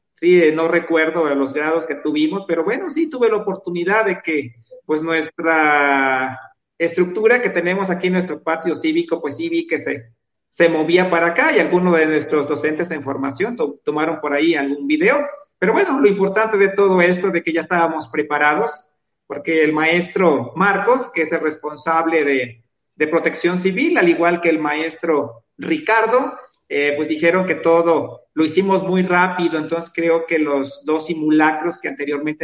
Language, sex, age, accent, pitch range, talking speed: Spanish, male, 50-69, Mexican, 155-200 Hz, 175 wpm